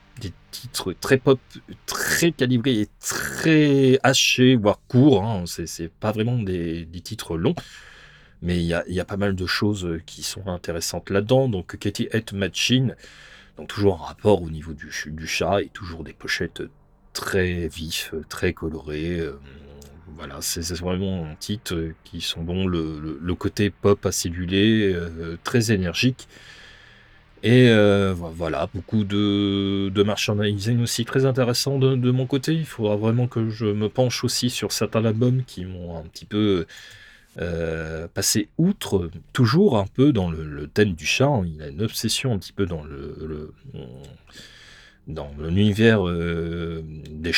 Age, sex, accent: 30-49, male, French